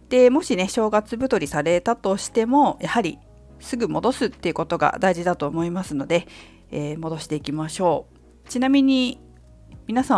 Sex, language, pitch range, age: female, Japanese, 150-250 Hz, 50-69